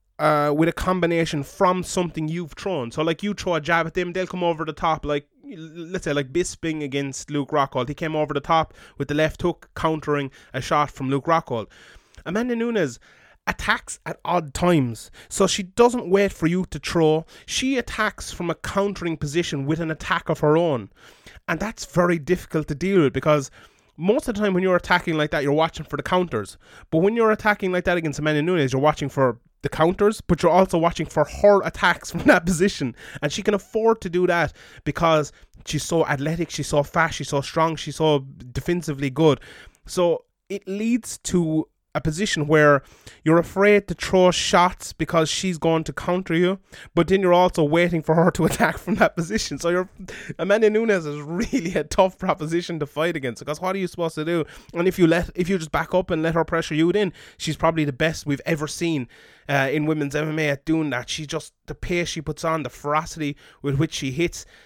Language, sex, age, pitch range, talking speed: English, male, 20-39, 150-180 Hz, 210 wpm